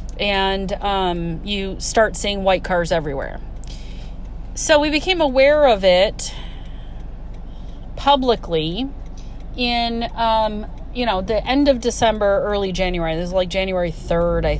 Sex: female